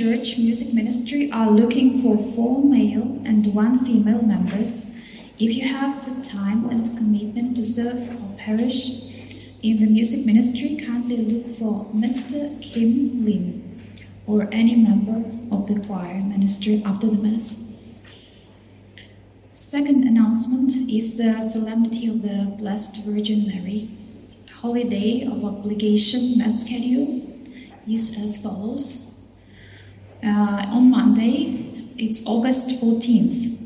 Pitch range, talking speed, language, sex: 215-240 Hz, 120 wpm, English, female